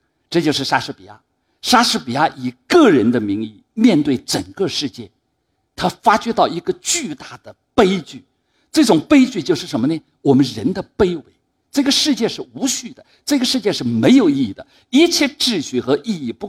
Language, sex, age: Chinese, male, 50-69